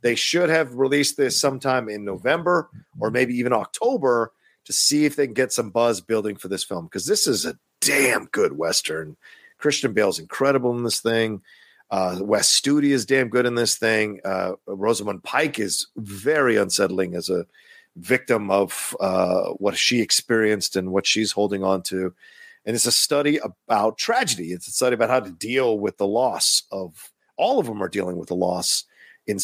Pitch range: 95-130 Hz